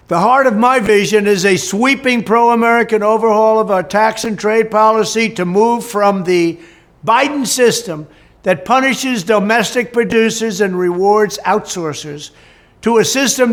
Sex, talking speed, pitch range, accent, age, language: male, 140 wpm, 180-230 Hz, American, 60-79, English